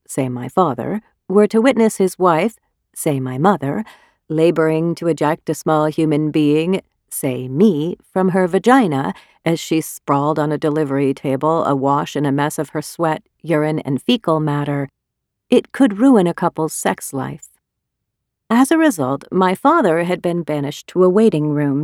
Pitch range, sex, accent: 145-200 Hz, female, American